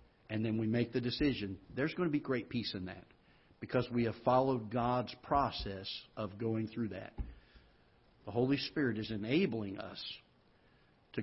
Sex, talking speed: male, 165 wpm